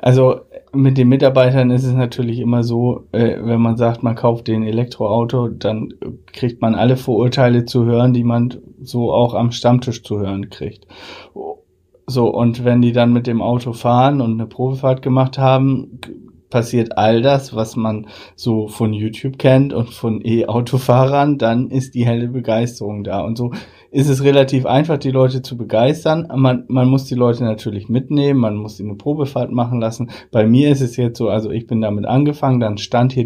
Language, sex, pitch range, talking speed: German, male, 115-130 Hz, 185 wpm